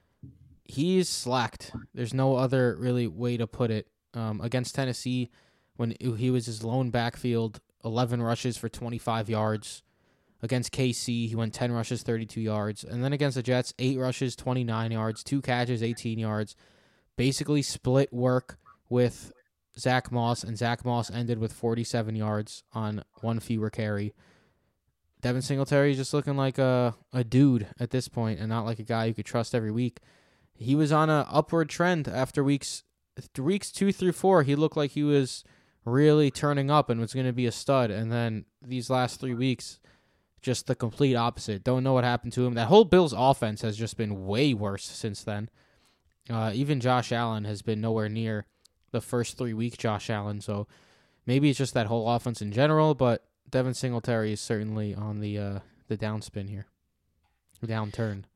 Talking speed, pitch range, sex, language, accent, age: 180 wpm, 110-130 Hz, male, English, American, 20-39